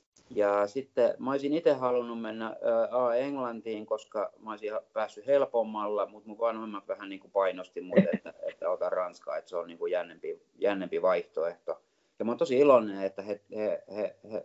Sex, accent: male, native